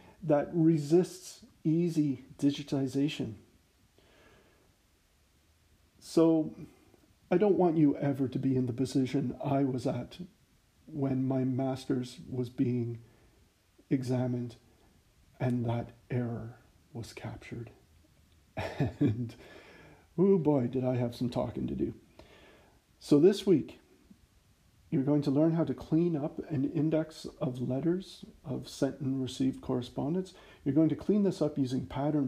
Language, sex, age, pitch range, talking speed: English, male, 50-69, 125-150 Hz, 125 wpm